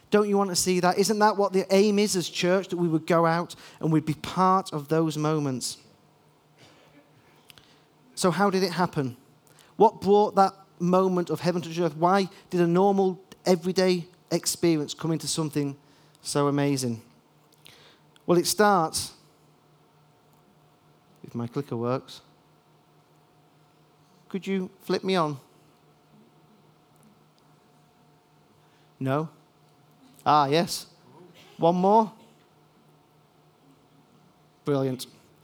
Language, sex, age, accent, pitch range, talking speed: English, male, 40-59, British, 150-190 Hz, 115 wpm